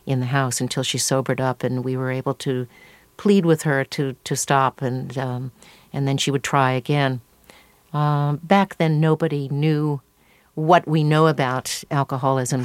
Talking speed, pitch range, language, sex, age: 170 wpm, 130-150 Hz, English, female, 50-69